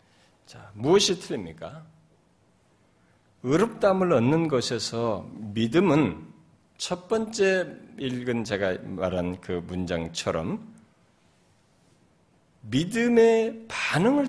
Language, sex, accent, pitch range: Korean, male, native, 145-230 Hz